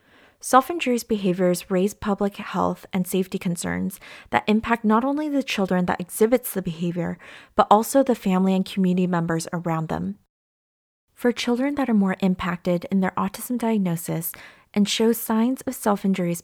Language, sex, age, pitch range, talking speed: English, female, 20-39, 180-220 Hz, 155 wpm